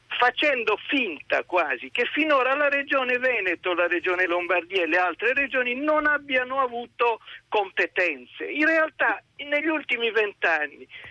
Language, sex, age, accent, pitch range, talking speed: Italian, male, 50-69, native, 220-295 Hz, 130 wpm